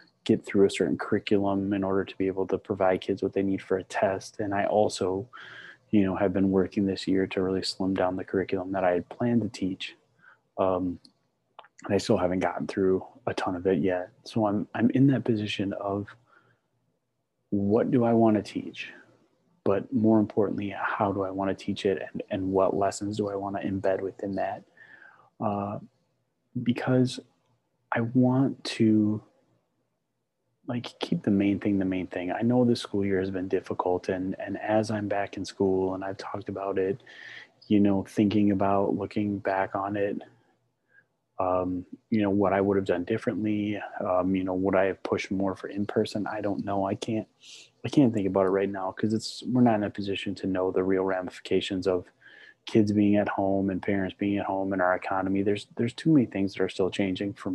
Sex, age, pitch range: male, 20-39, 95-105 Hz